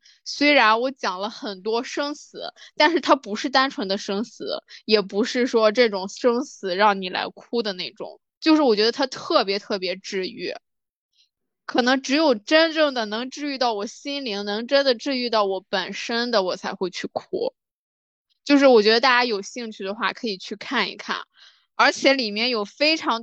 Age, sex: 20-39, female